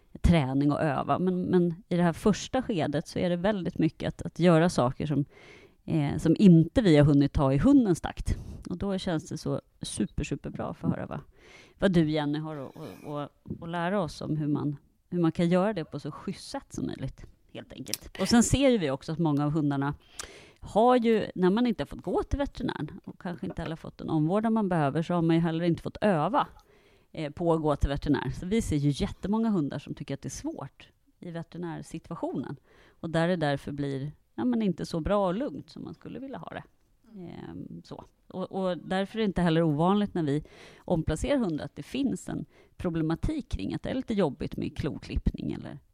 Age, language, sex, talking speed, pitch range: 30-49, Swedish, female, 215 wpm, 150-190 Hz